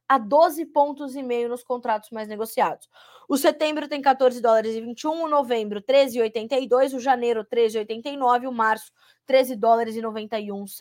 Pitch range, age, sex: 220-275 Hz, 20-39, female